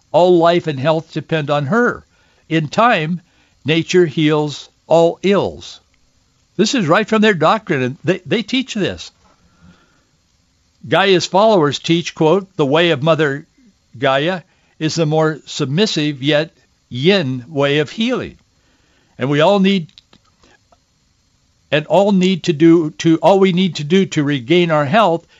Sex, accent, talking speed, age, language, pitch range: male, American, 145 wpm, 60-79, English, 135-170 Hz